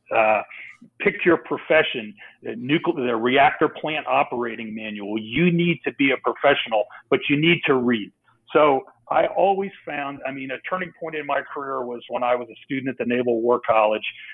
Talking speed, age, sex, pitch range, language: 190 wpm, 40-59, male, 125-150 Hz, English